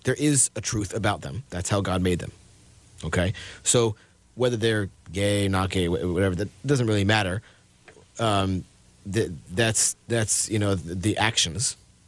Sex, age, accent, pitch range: male, 30-49, American, 95-115 Hz